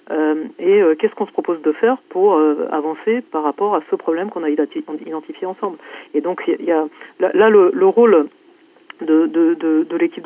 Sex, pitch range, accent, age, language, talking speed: female, 155-255 Hz, French, 40-59, French, 210 wpm